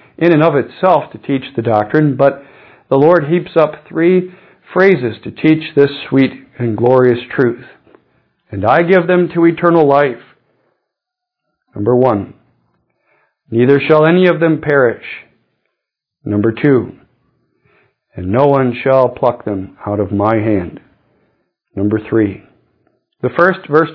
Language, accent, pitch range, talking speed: English, American, 130-175 Hz, 135 wpm